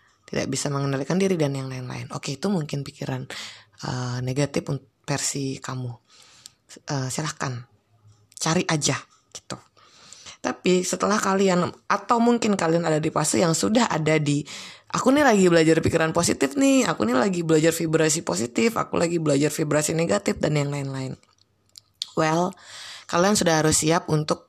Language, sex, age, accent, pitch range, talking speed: Indonesian, female, 20-39, native, 135-170 Hz, 150 wpm